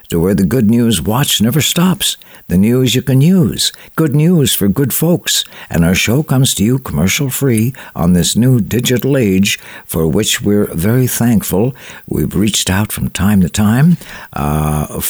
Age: 60-79